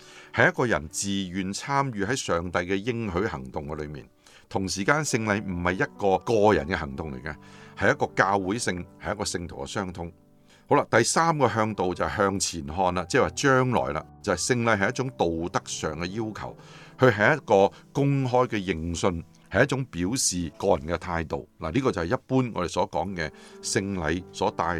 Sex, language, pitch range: male, Chinese, 85-115 Hz